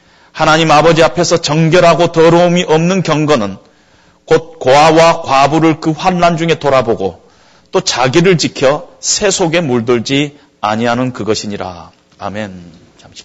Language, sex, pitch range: Korean, male, 120-175 Hz